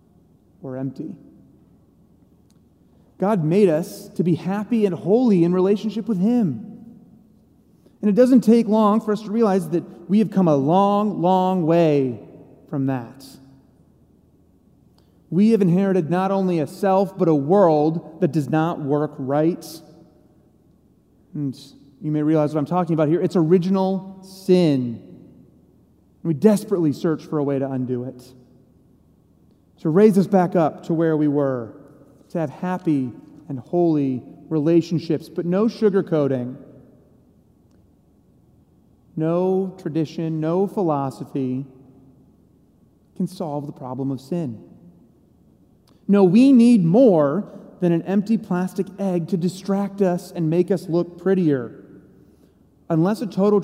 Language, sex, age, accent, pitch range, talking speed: English, male, 30-49, American, 145-195 Hz, 130 wpm